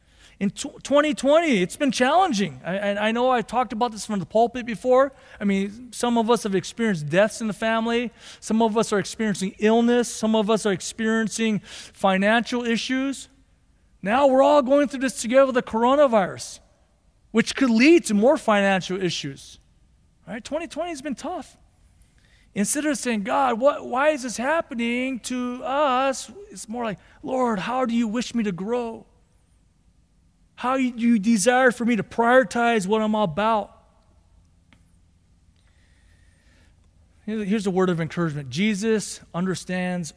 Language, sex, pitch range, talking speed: English, male, 165-240 Hz, 150 wpm